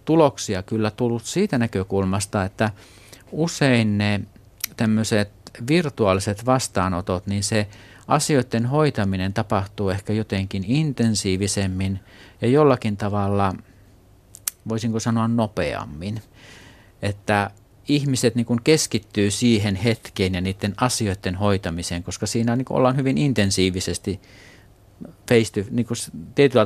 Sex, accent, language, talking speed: male, native, Finnish, 95 wpm